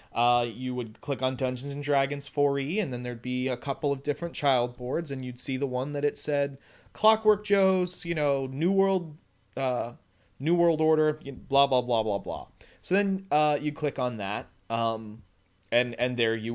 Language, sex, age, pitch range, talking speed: English, male, 30-49, 125-150 Hz, 195 wpm